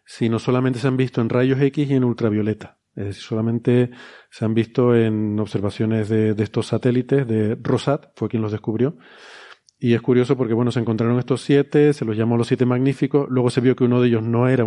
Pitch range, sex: 115-130 Hz, male